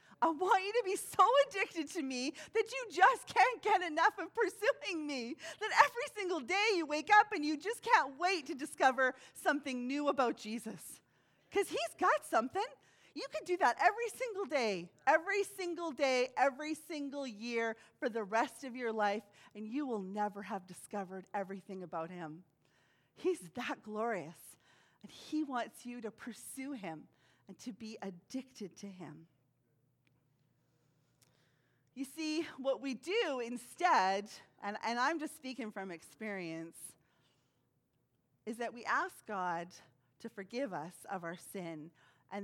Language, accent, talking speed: English, American, 155 wpm